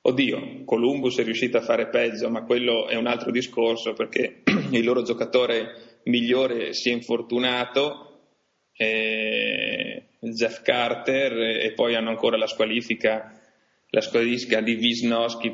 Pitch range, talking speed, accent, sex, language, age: 110-120 Hz, 125 wpm, native, male, Italian, 20-39